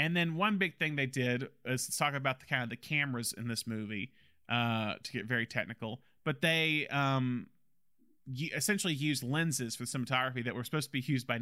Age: 30-49